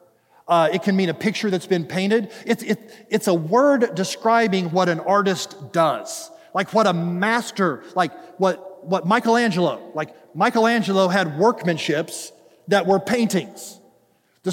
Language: English